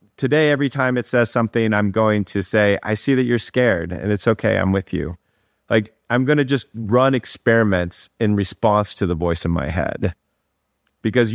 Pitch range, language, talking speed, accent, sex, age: 90-115 Hz, English, 195 wpm, American, male, 40-59